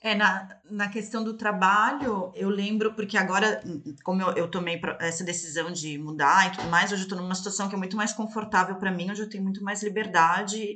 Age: 30-49